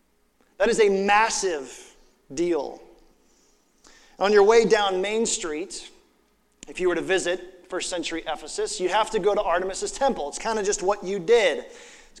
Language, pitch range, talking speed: English, 175-245 Hz, 165 wpm